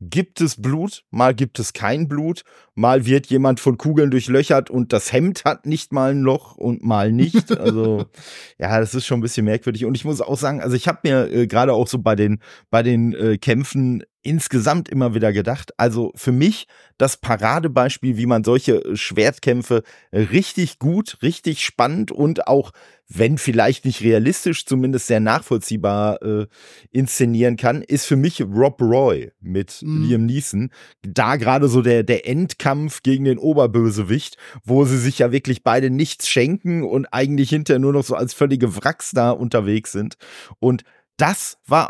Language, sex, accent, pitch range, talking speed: German, male, German, 115-145 Hz, 175 wpm